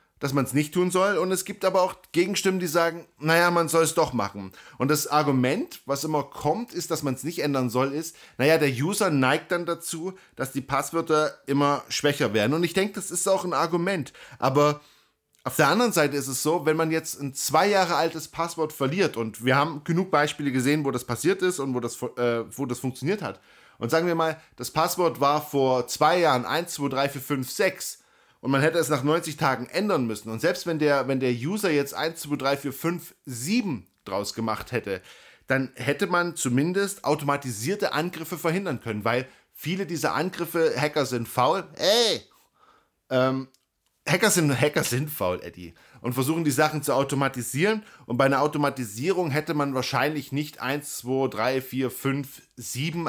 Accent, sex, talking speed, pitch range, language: German, male, 195 wpm, 130-165 Hz, German